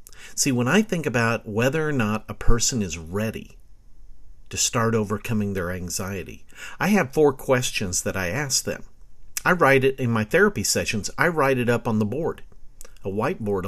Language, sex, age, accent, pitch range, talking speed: English, male, 50-69, American, 110-155 Hz, 180 wpm